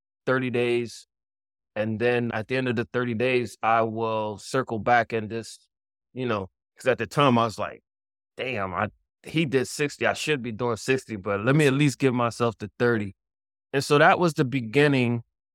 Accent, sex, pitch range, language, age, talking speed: American, male, 100-130 Hz, English, 20-39, 195 wpm